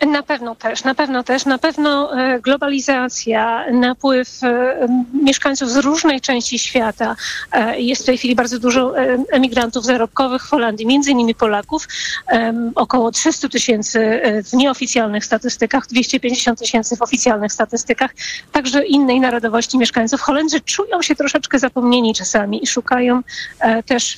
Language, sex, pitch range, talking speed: Polish, female, 240-280 Hz, 130 wpm